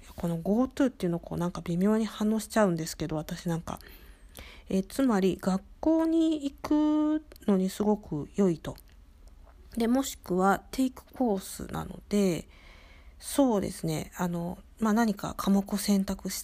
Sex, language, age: female, Japanese, 50-69